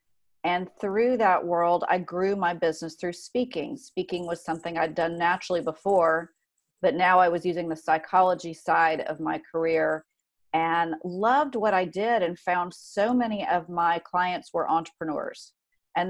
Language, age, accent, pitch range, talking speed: English, 40-59, American, 170-200 Hz, 160 wpm